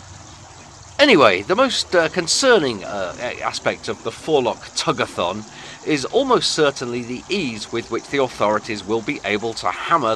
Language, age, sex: English, 40-59, male